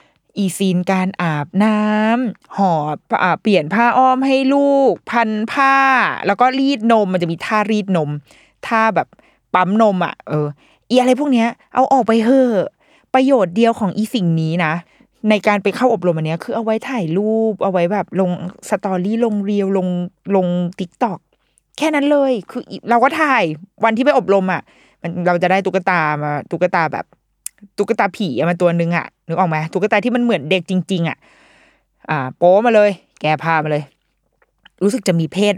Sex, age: female, 20-39